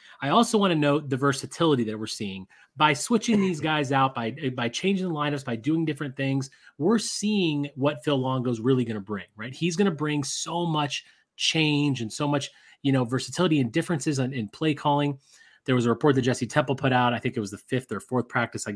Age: 30-49